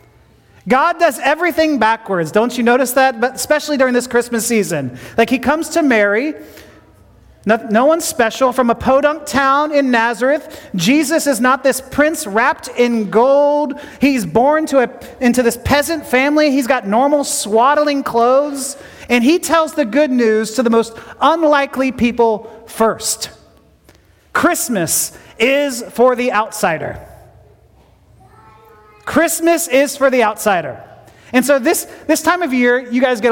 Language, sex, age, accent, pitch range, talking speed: English, male, 30-49, American, 215-280 Hz, 150 wpm